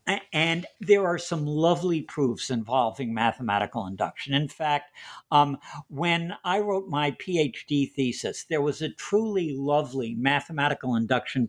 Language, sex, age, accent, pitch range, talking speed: English, male, 60-79, American, 135-170 Hz, 130 wpm